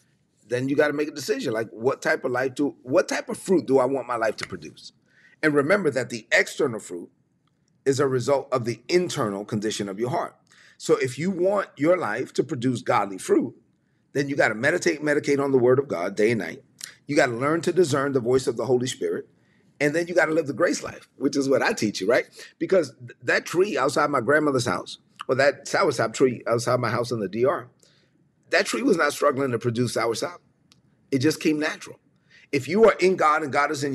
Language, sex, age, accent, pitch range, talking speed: English, male, 40-59, American, 130-185 Hz, 230 wpm